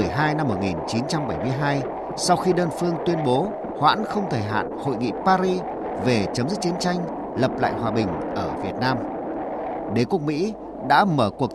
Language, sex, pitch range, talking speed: Vietnamese, male, 135-180 Hz, 180 wpm